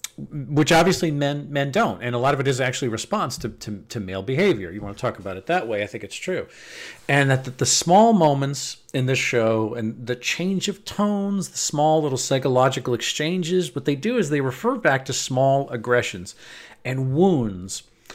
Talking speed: 200 wpm